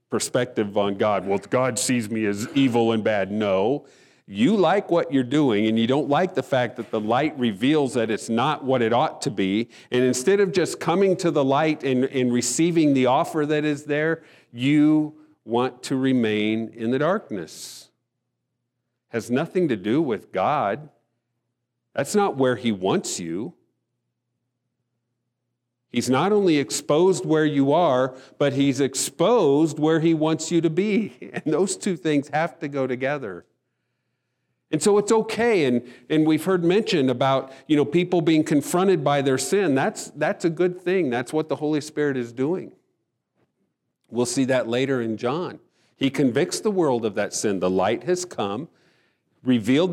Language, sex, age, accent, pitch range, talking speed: English, male, 50-69, American, 120-155 Hz, 170 wpm